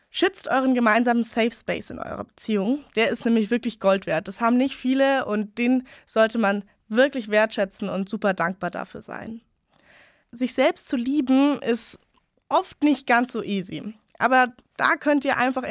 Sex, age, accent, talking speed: female, 20-39, German, 170 wpm